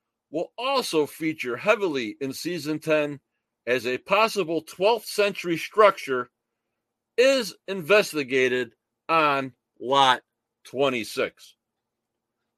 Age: 50-69